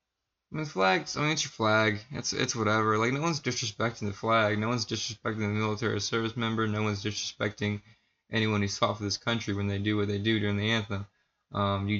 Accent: American